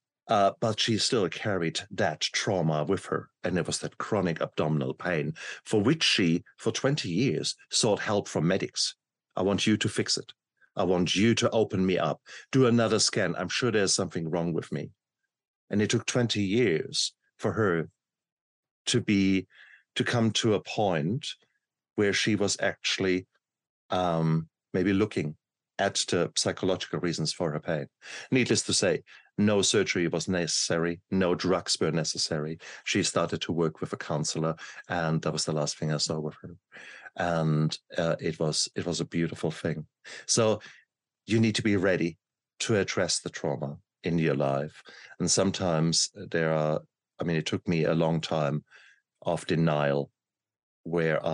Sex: male